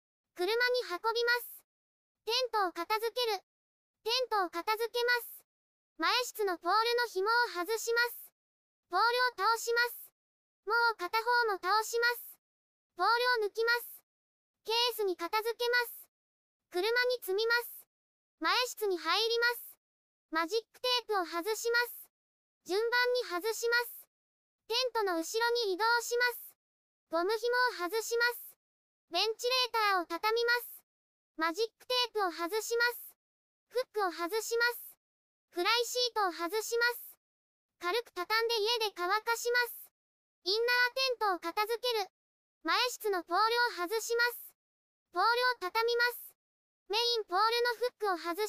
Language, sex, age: Japanese, male, 20-39